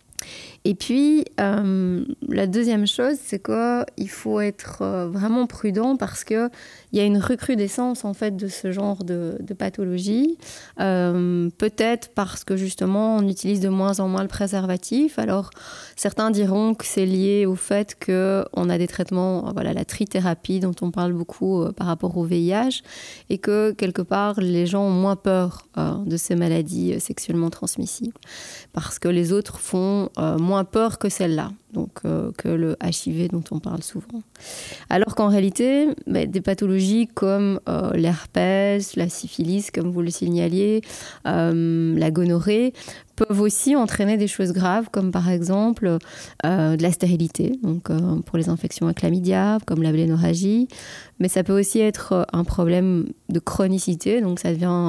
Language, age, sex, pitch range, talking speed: French, 20-39, female, 175-210 Hz, 165 wpm